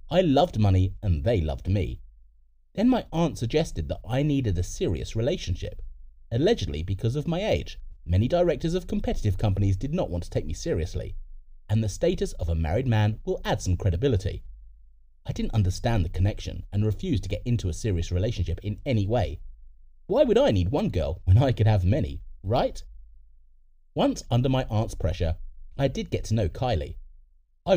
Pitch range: 80-120 Hz